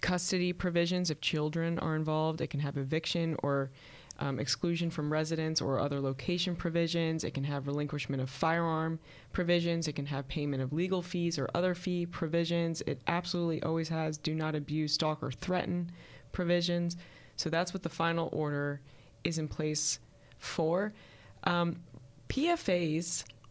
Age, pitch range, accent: 20-39, 145-170 Hz, American